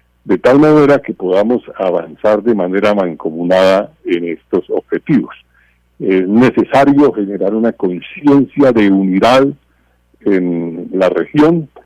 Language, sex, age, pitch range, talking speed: Spanish, male, 50-69, 85-125 Hz, 110 wpm